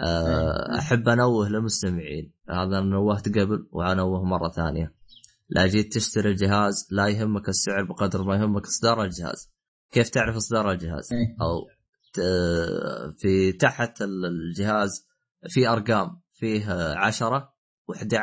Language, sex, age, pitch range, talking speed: Arabic, male, 20-39, 95-120 Hz, 110 wpm